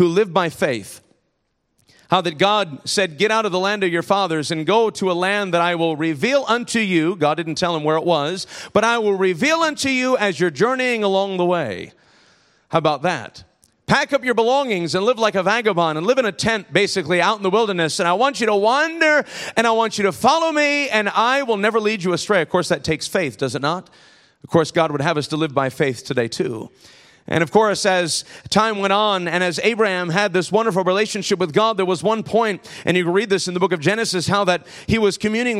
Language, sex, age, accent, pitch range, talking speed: English, male, 40-59, American, 170-225 Hz, 240 wpm